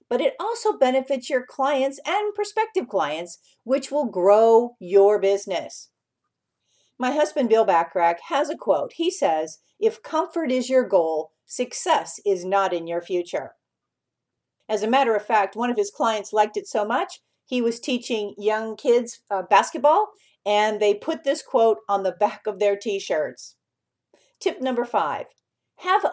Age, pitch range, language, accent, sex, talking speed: 50-69, 200-290 Hz, English, American, female, 160 wpm